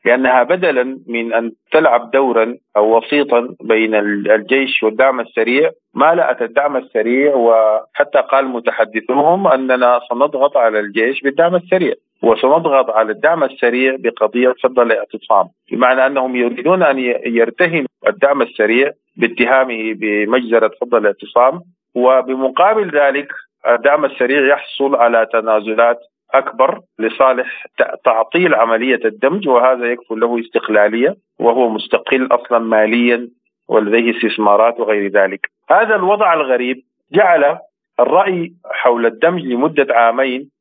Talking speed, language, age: 110 wpm, Arabic, 40-59